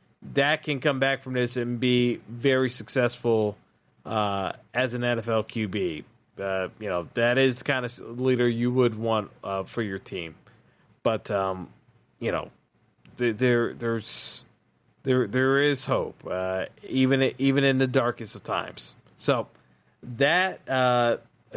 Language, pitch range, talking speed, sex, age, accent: English, 120-140 Hz, 145 wpm, male, 30-49, American